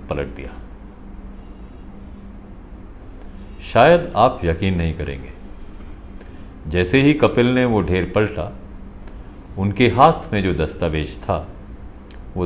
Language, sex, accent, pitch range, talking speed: Hindi, male, native, 85-105 Hz, 100 wpm